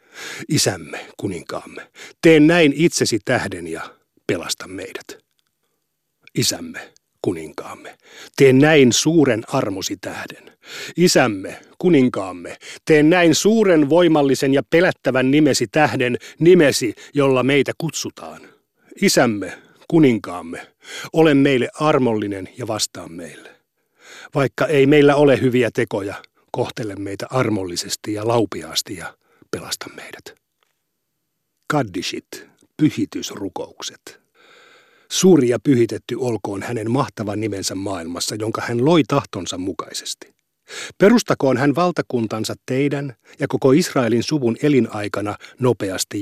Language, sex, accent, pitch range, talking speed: Finnish, male, native, 120-160 Hz, 100 wpm